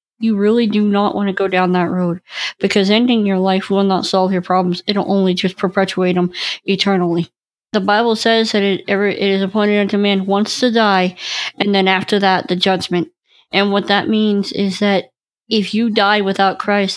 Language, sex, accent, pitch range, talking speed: English, female, American, 190-215 Hz, 195 wpm